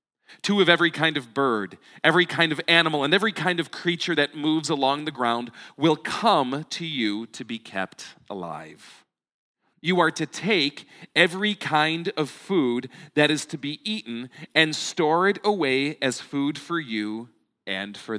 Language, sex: English, male